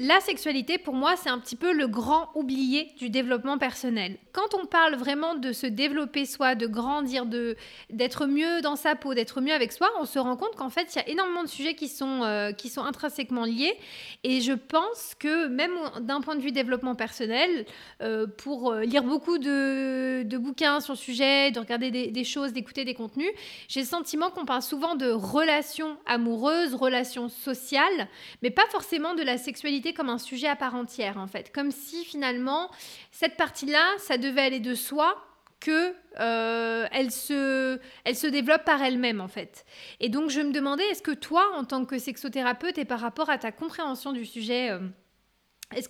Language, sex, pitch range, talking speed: French, female, 245-310 Hz, 195 wpm